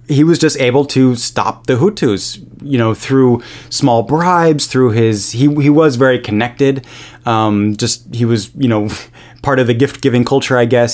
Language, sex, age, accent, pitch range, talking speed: English, male, 30-49, American, 115-135 Hz, 180 wpm